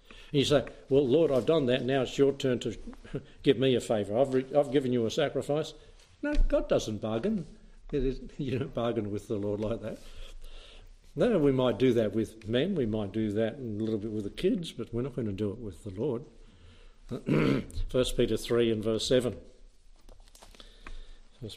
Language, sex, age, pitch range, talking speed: English, male, 60-79, 110-140 Hz, 195 wpm